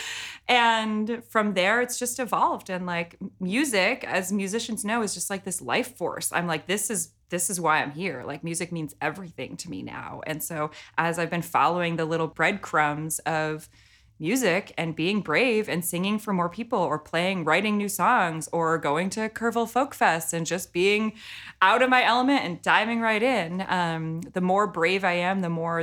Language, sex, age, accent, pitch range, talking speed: English, female, 20-39, American, 160-210 Hz, 195 wpm